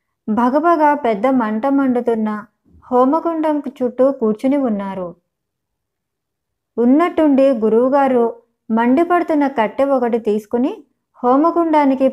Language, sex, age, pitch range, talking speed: Telugu, male, 20-39, 220-275 Hz, 75 wpm